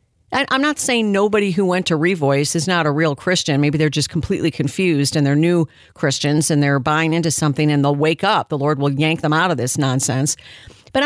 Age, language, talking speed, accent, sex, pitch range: 50-69, English, 220 wpm, American, female, 150-205 Hz